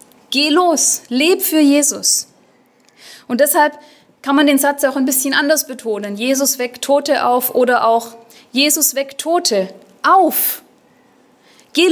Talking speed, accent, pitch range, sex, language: 135 wpm, German, 230-300 Hz, female, German